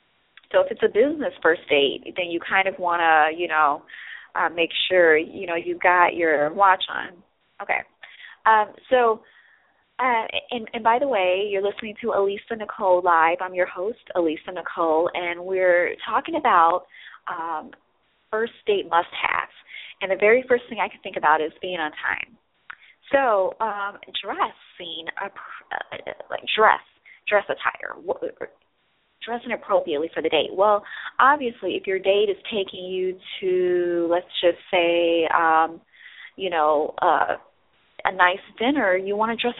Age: 20-39